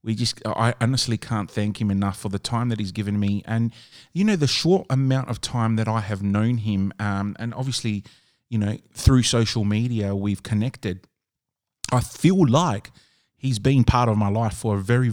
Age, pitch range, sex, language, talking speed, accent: 30-49, 110-130 Hz, male, English, 195 wpm, Australian